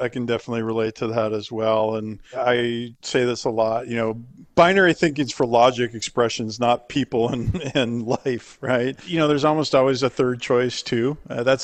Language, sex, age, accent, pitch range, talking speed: English, male, 50-69, American, 115-135 Hz, 200 wpm